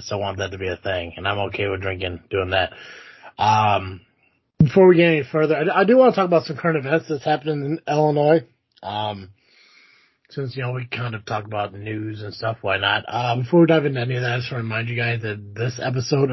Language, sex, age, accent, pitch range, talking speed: English, male, 30-49, American, 120-165 Hz, 240 wpm